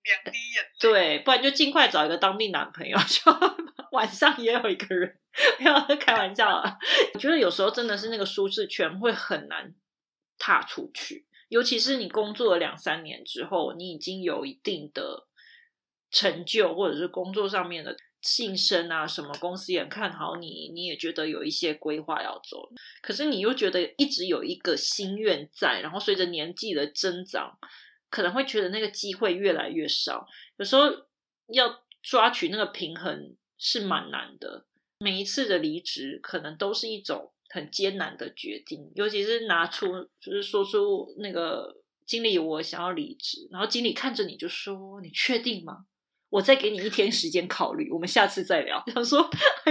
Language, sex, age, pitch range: Chinese, female, 30-49, 185-295 Hz